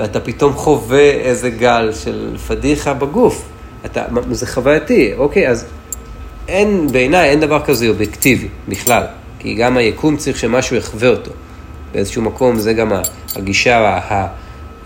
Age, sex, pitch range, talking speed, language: 40-59, male, 100-145 Hz, 130 wpm, Hebrew